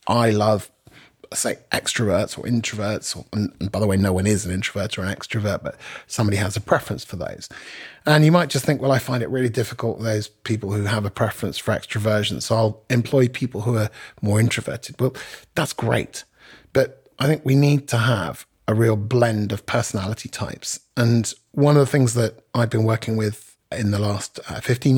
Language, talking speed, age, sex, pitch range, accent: English, 200 wpm, 30-49, male, 105-120 Hz, British